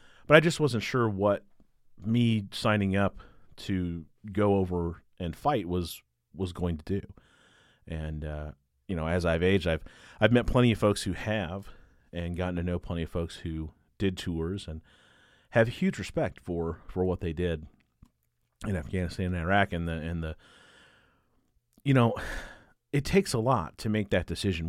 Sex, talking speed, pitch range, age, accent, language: male, 175 wpm, 80-105 Hz, 40-59, American, English